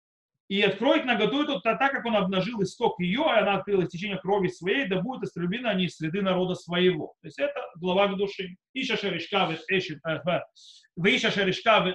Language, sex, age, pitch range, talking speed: Russian, male, 30-49, 175-225 Hz, 155 wpm